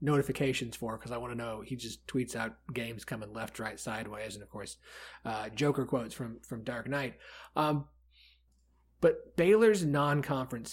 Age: 30-49